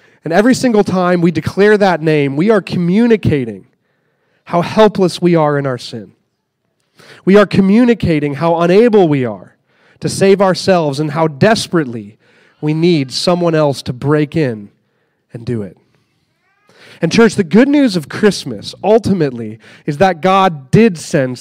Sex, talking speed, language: male, 150 wpm, English